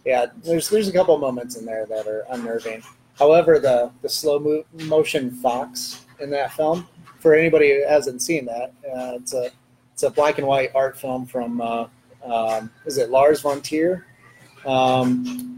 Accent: American